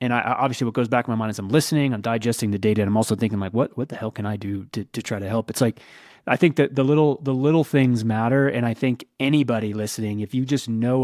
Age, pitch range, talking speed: 30-49, 115-135 Hz, 290 wpm